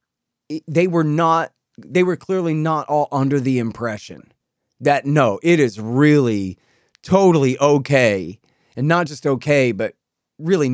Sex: male